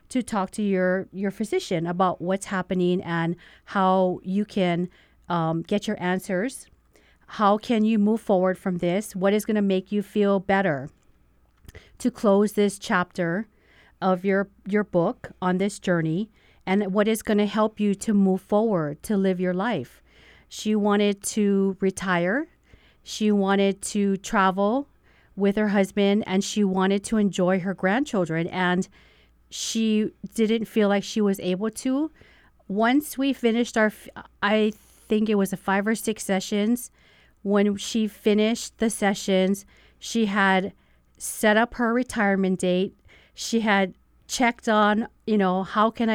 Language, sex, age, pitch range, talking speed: English, female, 40-59, 185-215 Hz, 150 wpm